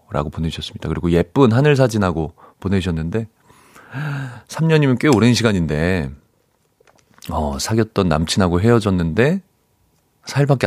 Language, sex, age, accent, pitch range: Korean, male, 30-49, native, 95-150 Hz